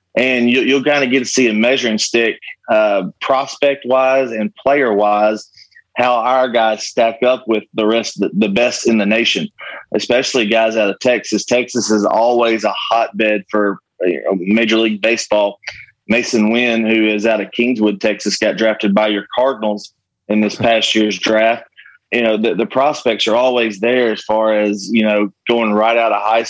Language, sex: English, male